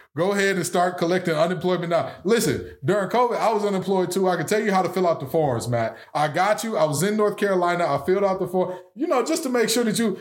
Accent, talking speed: American, 270 wpm